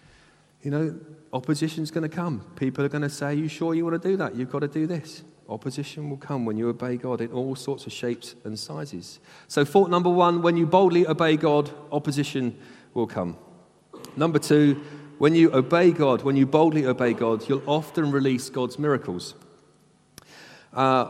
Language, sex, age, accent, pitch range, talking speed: English, male, 40-59, British, 120-155 Hz, 190 wpm